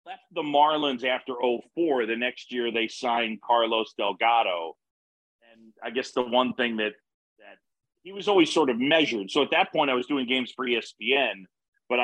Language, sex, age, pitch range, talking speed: English, male, 40-59, 115-165 Hz, 190 wpm